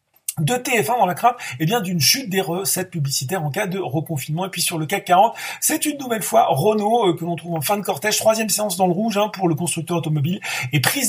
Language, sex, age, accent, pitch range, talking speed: French, male, 40-59, French, 155-220 Hz, 255 wpm